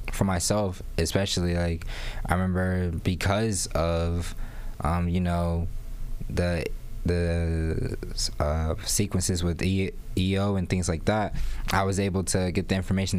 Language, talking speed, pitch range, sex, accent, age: English, 125 wpm, 90-105 Hz, male, American, 20-39